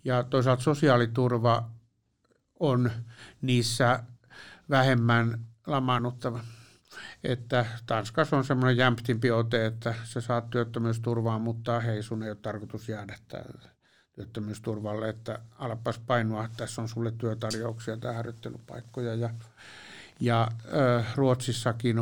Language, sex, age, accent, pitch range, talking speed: Finnish, male, 60-79, native, 115-125 Hz, 105 wpm